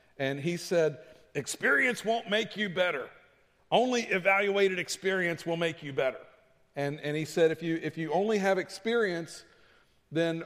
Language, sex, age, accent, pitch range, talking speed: English, male, 50-69, American, 135-170 Hz, 155 wpm